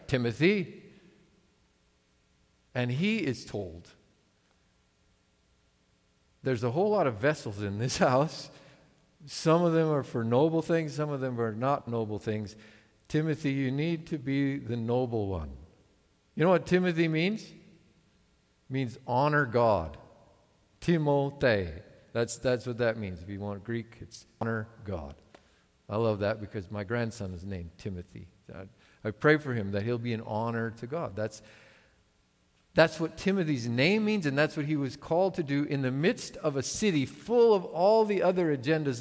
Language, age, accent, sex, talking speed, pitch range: English, 50-69, American, male, 160 wpm, 110-155 Hz